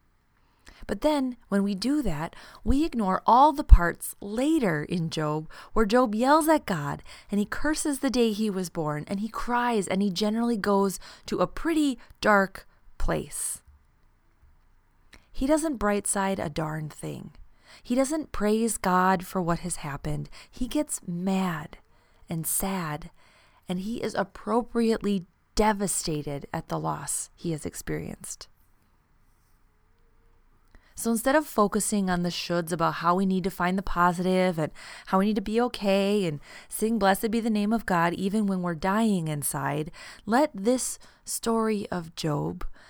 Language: English